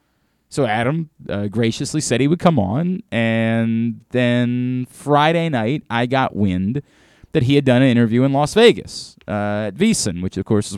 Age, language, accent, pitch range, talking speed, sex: 30-49, English, American, 110-160 Hz, 180 wpm, male